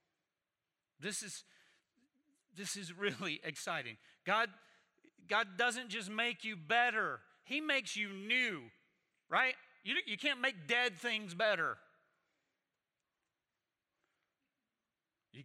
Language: English